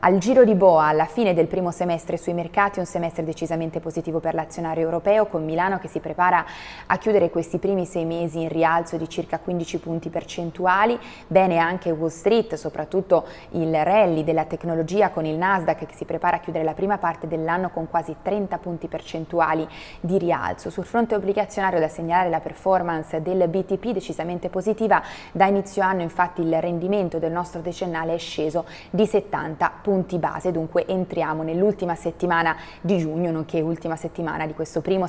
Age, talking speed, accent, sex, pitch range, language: 20-39, 175 wpm, native, female, 160-190 Hz, Italian